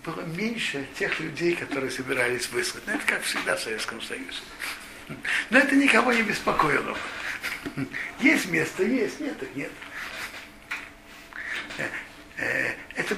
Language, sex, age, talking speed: Russian, male, 60-79, 115 wpm